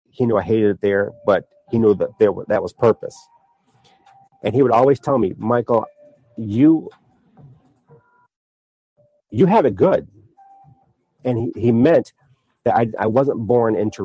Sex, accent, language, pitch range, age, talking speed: male, American, English, 110-160 Hz, 40-59, 160 wpm